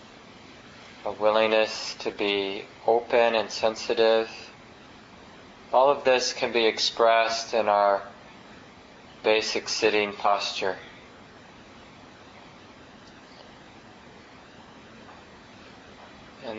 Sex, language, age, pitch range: male, English, 20-39, 105-115 Hz